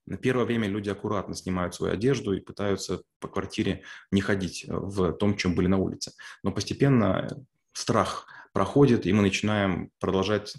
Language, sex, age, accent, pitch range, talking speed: Russian, male, 30-49, native, 95-110 Hz, 160 wpm